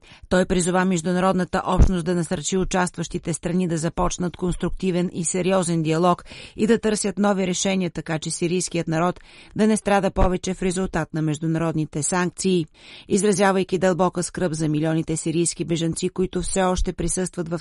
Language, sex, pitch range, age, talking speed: Bulgarian, female, 165-185 Hz, 40-59, 150 wpm